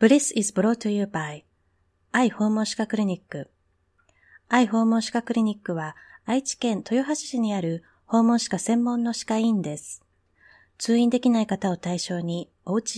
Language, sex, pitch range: Japanese, female, 170-235 Hz